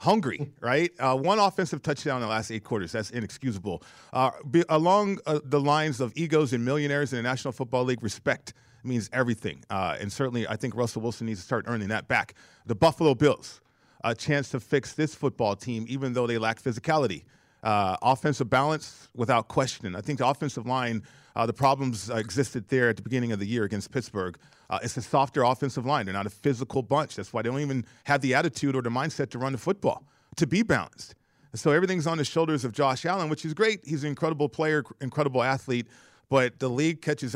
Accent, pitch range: American, 120-145 Hz